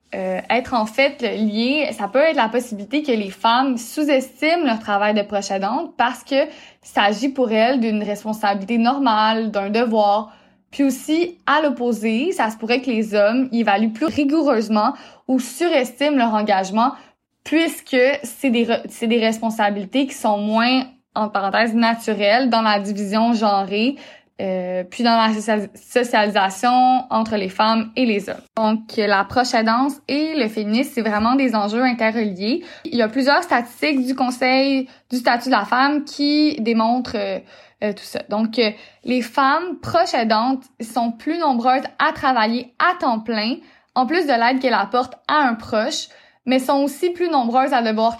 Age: 20-39